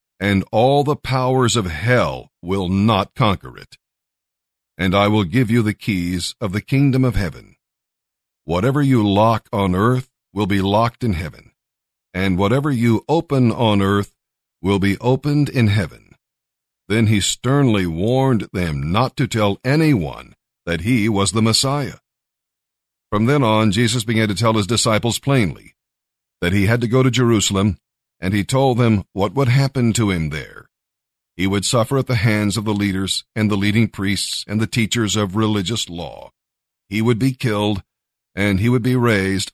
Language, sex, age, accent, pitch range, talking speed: English, male, 50-69, American, 100-125 Hz, 170 wpm